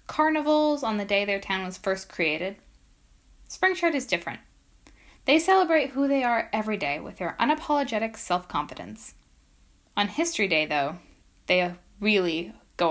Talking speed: 145 wpm